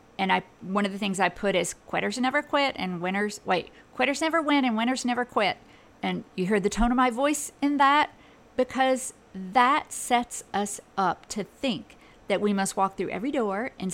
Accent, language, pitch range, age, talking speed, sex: American, English, 185-245 Hz, 50-69, 200 wpm, female